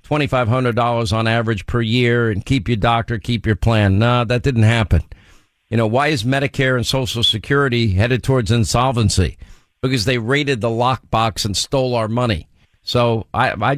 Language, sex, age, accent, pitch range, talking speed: English, male, 50-69, American, 110-135 Hz, 165 wpm